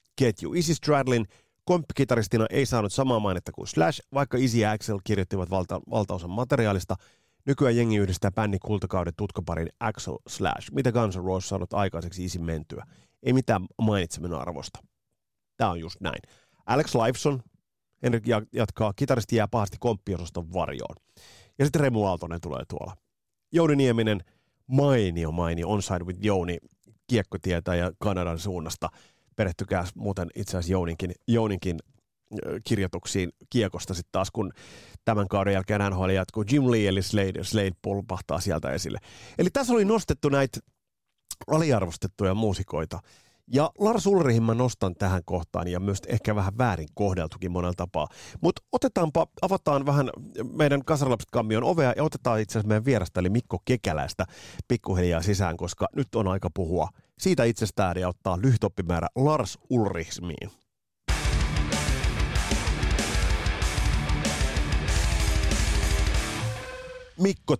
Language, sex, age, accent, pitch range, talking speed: Finnish, male, 30-49, native, 90-120 Hz, 130 wpm